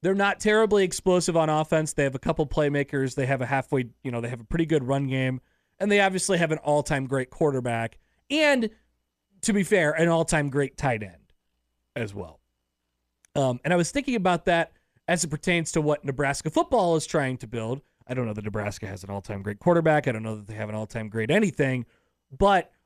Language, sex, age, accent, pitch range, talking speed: English, male, 30-49, American, 120-170 Hz, 215 wpm